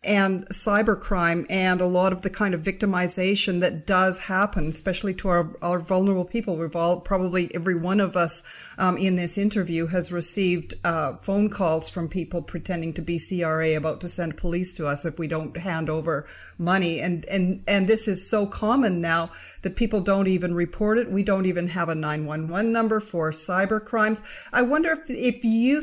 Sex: female